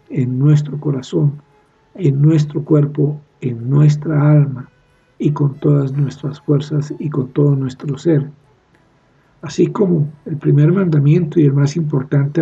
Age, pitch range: 60-79, 140-160 Hz